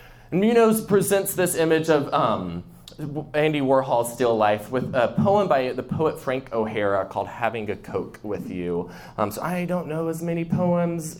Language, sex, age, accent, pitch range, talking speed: English, male, 20-39, American, 110-150 Hz, 170 wpm